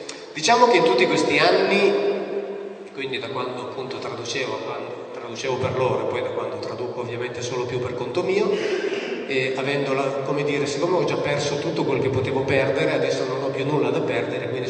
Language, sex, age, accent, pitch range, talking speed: Italian, male, 30-49, native, 140-185 Hz, 190 wpm